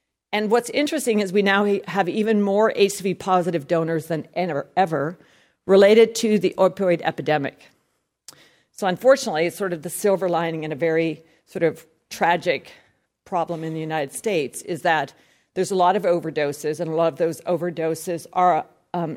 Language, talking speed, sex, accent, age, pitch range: English, 160 wpm, female, American, 50-69, 165-200 Hz